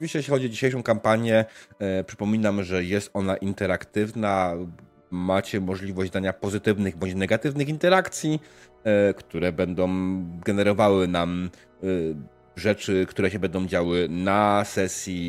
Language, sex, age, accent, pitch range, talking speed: Polish, male, 30-49, native, 90-105 Hz, 120 wpm